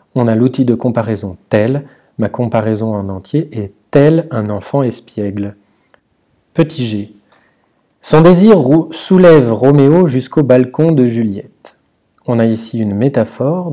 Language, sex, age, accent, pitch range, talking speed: French, male, 40-59, French, 110-140 Hz, 135 wpm